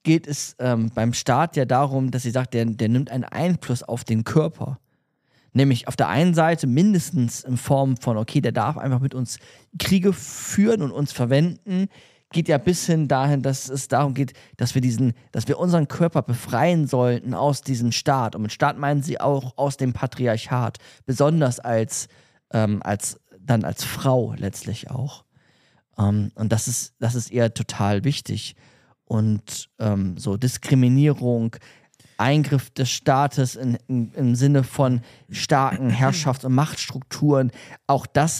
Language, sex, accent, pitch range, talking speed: German, male, German, 115-145 Hz, 165 wpm